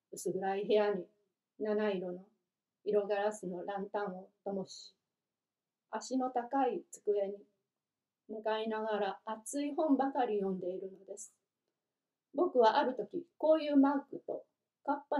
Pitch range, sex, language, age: 200-255 Hz, female, Japanese, 40-59